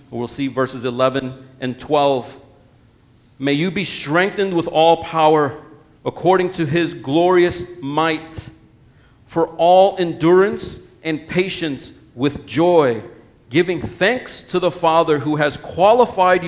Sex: male